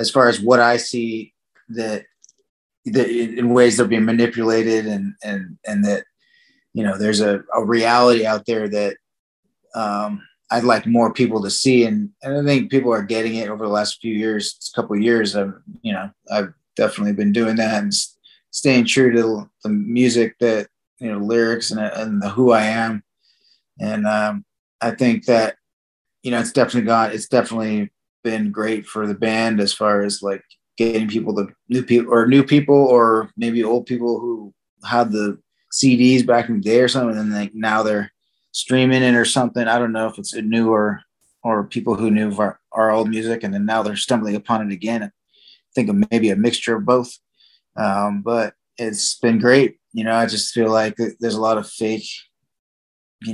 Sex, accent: male, American